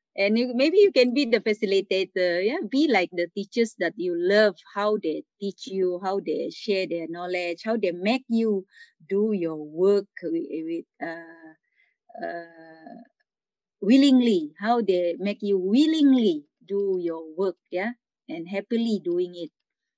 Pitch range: 185-260 Hz